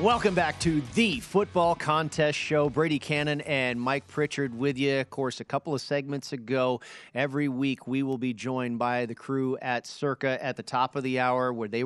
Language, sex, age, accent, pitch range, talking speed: English, male, 40-59, American, 120-145 Hz, 200 wpm